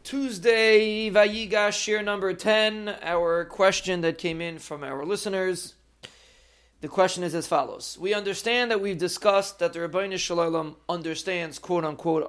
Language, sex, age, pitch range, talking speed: English, male, 40-59, 155-190 Hz, 135 wpm